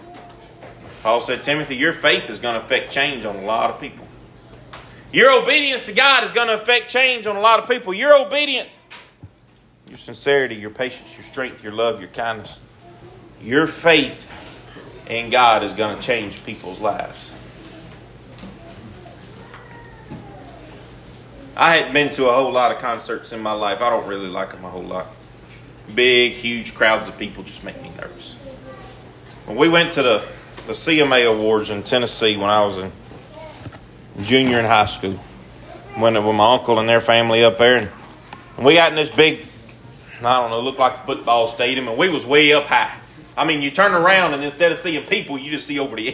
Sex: male